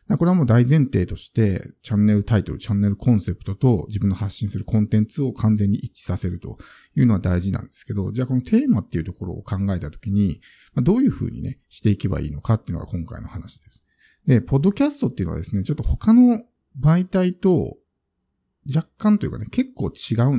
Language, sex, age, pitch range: Japanese, male, 50-69, 95-130 Hz